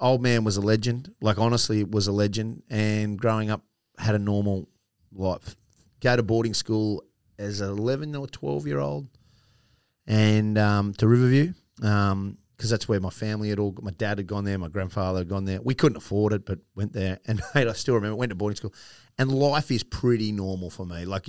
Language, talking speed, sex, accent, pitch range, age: English, 205 wpm, male, Australian, 95-110 Hz, 30-49